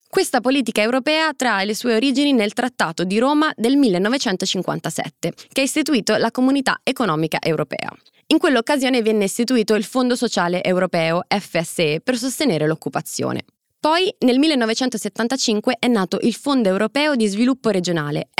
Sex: female